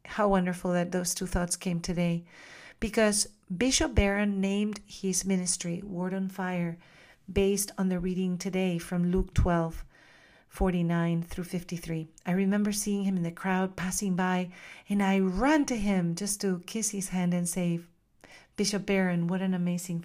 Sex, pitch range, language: female, 170-195 Hz, English